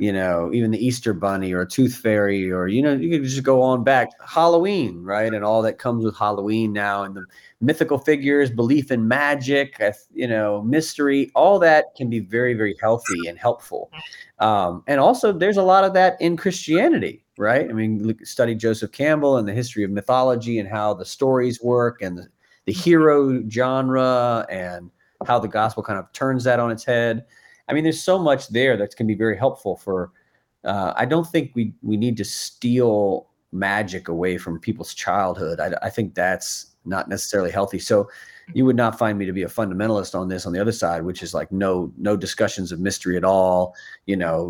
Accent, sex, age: American, male, 30-49